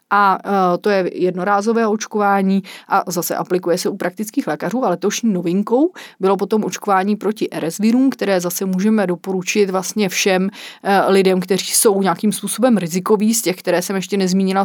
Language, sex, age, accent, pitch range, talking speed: Czech, female, 30-49, native, 185-225 Hz, 160 wpm